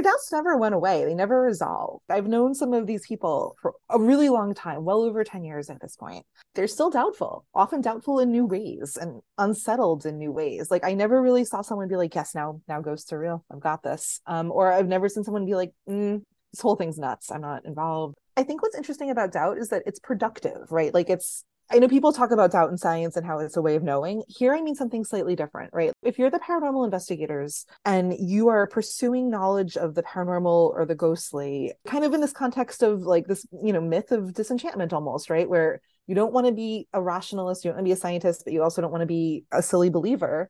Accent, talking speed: American, 240 wpm